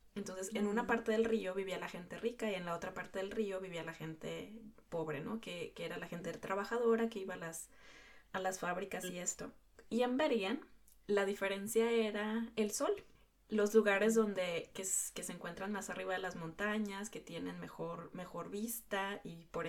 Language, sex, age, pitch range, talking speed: Spanish, female, 20-39, 175-215 Hz, 200 wpm